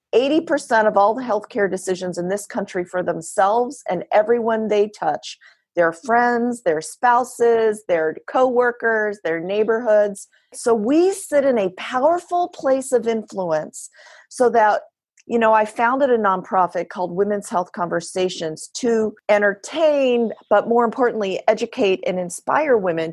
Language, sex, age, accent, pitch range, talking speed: English, female, 40-59, American, 180-230 Hz, 135 wpm